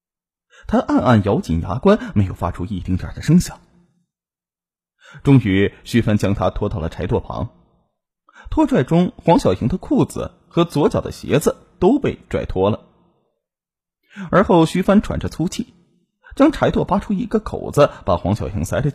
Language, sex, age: Chinese, male, 20-39